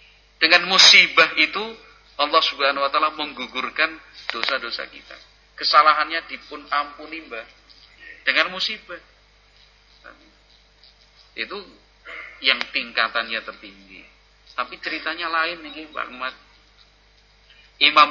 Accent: native